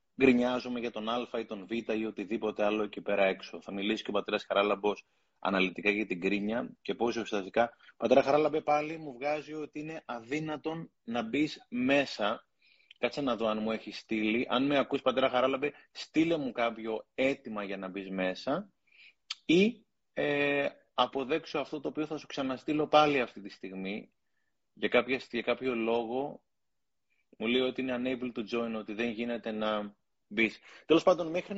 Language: Greek